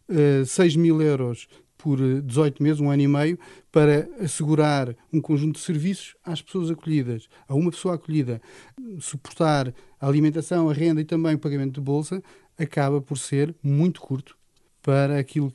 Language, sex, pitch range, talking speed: Portuguese, male, 135-165 Hz, 160 wpm